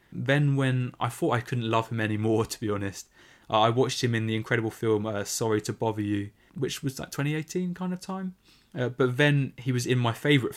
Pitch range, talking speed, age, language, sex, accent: 105-135 Hz, 220 wpm, 20-39, English, male, British